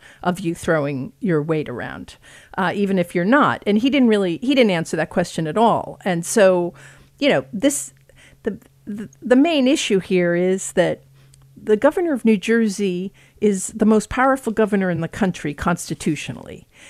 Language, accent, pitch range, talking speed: English, American, 180-230 Hz, 175 wpm